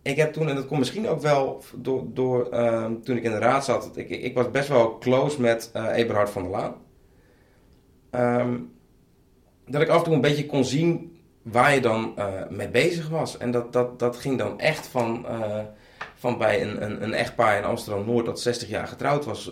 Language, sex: Dutch, male